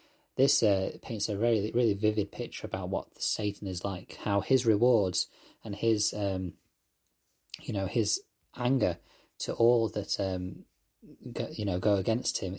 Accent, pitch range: British, 100-115 Hz